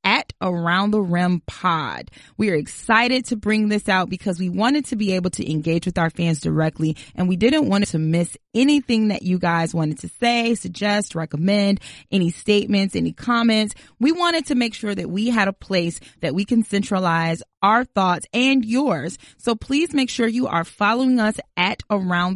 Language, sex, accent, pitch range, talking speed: English, female, American, 170-220 Hz, 190 wpm